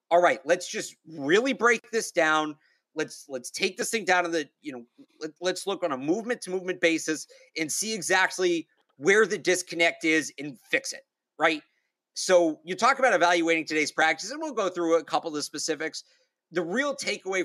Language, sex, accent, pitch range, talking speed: English, male, American, 155-195 Hz, 195 wpm